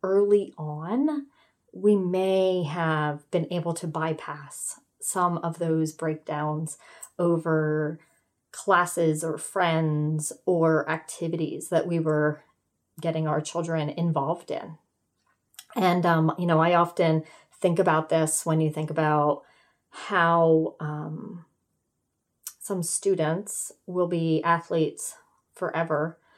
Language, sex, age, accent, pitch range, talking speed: English, female, 30-49, American, 160-185 Hz, 110 wpm